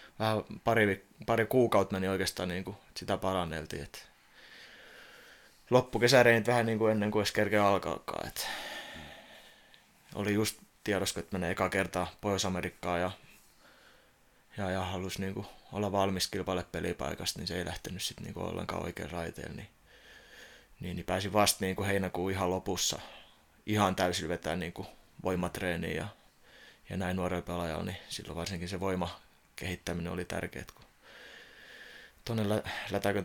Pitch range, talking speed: 90-100 Hz, 140 wpm